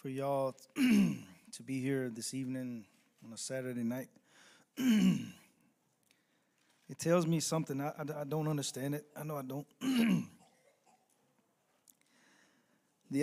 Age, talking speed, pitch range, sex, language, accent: 20-39, 120 wpm, 130-150 Hz, male, English, American